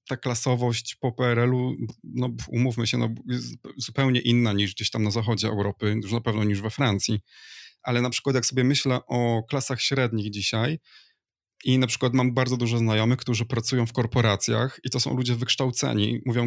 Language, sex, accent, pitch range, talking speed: Polish, male, native, 115-135 Hz, 180 wpm